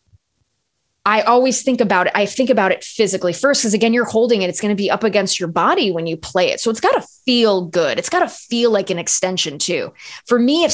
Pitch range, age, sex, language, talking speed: 185-250 Hz, 20-39, female, English, 250 wpm